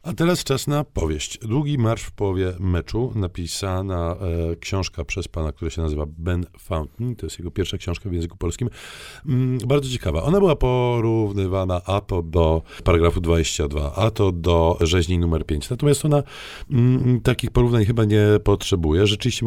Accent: native